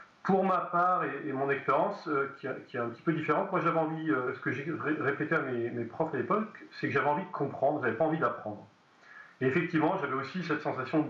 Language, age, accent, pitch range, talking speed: French, 40-59, French, 120-160 Hz, 260 wpm